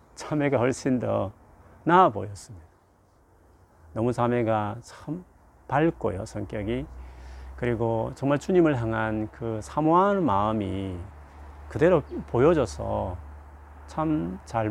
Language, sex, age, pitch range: Korean, male, 40-59, 95-125 Hz